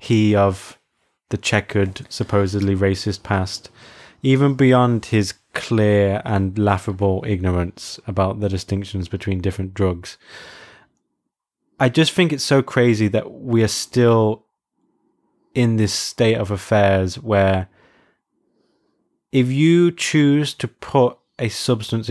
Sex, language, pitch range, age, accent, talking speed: male, English, 100-125 Hz, 20-39, British, 115 wpm